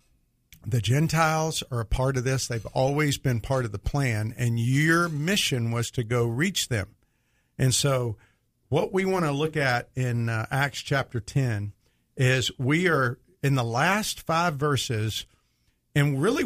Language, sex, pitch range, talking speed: English, male, 120-160 Hz, 160 wpm